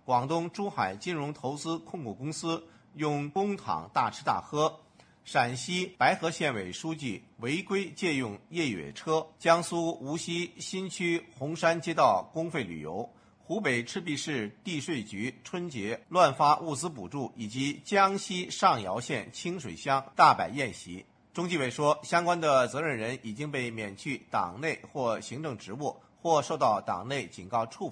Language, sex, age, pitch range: English, male, 50-69, 125-165 Hz